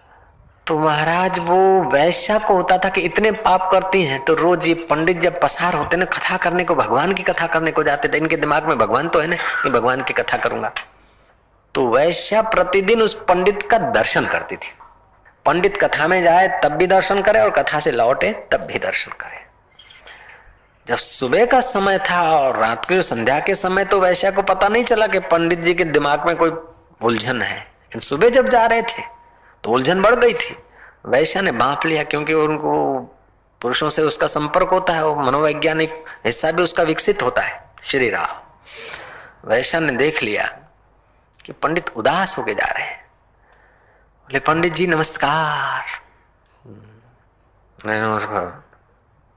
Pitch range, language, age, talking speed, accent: 145-190 Hz, Hindi, 30-49, 160 wpm, native